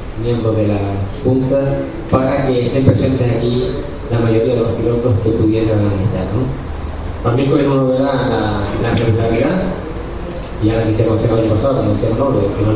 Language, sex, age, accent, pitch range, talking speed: Spanish, male, 20-39, Spanish, 110-130 Hz, 140 wpm